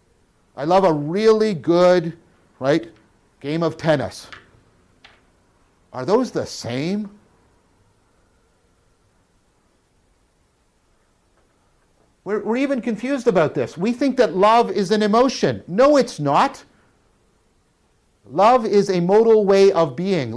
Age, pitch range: 50-69, 135-205 Hz